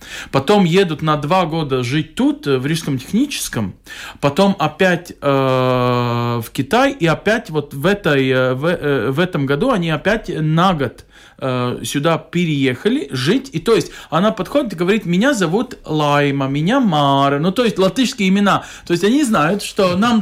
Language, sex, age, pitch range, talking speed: Russian, male, 40-59, 140-195 Hz, 155 wpm